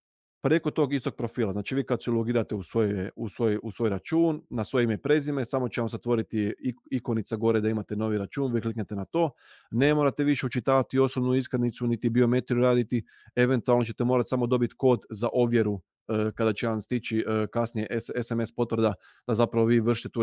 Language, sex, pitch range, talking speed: Croatian, male, 110-130 Hz, 185 wpm